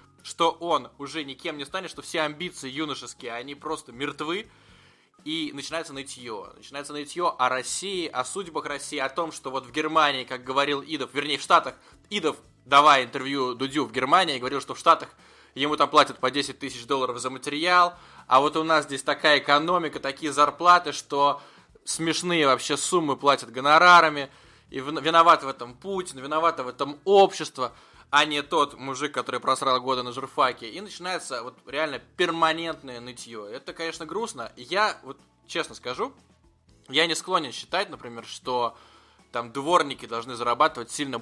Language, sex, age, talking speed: Russian, male, 20-39, 160 wpm